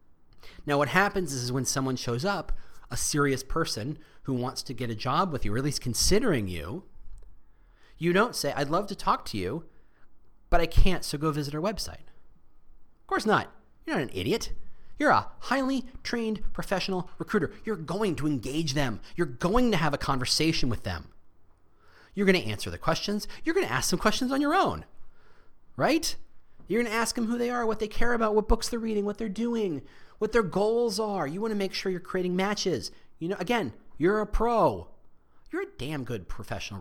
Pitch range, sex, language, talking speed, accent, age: 130-210 Hz, male, English, 205 wpm, American, 30-49